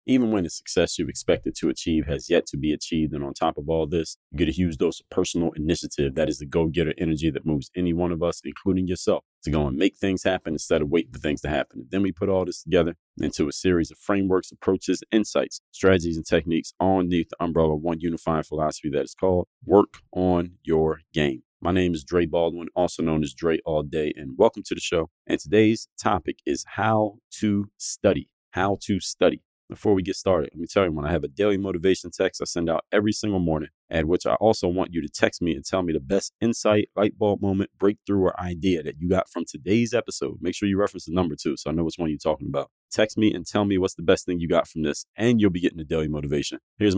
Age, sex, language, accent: 30-49, male, English, American